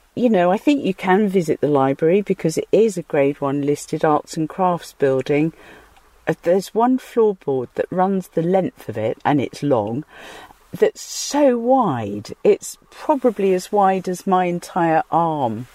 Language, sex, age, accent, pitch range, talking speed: English, female, 50-69, British, 165-235 Hz, 165 wpm